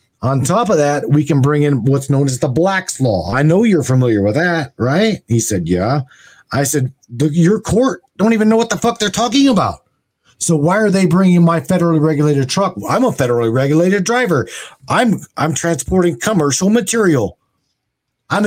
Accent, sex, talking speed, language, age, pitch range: American, male, 185 wpm, English, 40-59, 130-180 Hz